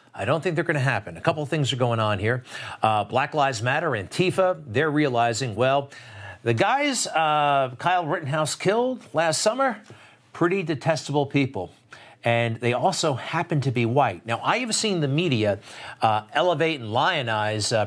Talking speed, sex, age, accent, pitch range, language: 175 wpm, male, 50-69, American, 115-160 Hz, English